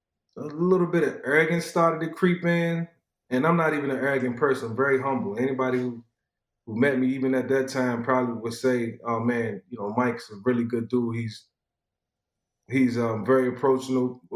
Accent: American